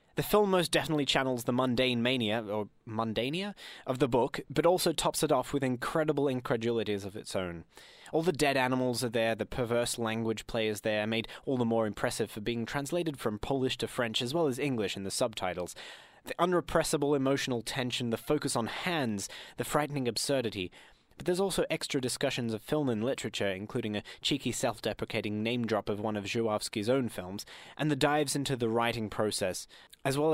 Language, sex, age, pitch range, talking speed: English, male, 20-39, 110-135 Hz, 190 wpm